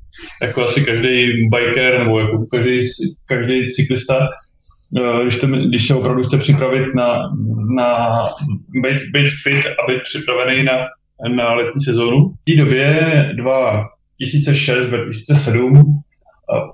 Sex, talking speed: male, 105 wpm